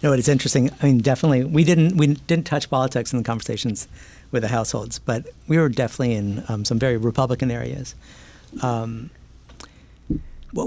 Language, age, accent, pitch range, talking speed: English, 50-69, American, 115-145 Hz, 180 wpm